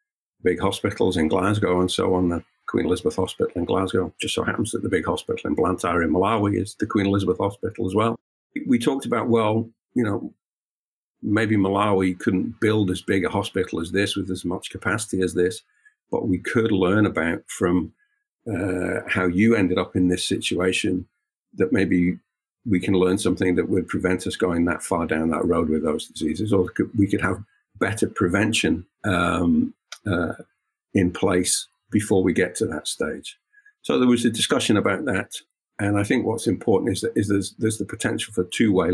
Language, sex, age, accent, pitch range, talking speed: English, male, 50-69, British, 90-115 Hz, 190 wpm